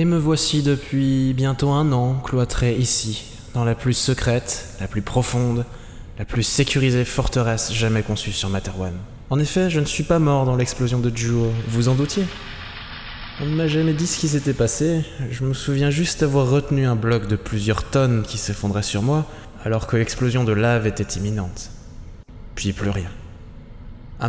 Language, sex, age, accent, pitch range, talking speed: French, male, 20-39, French, 105-130 Hz, 185 wpm